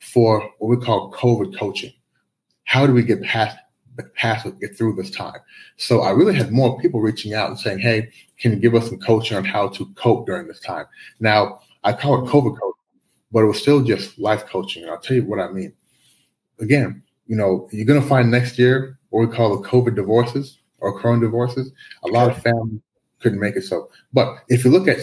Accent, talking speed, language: American, 215 wpm, English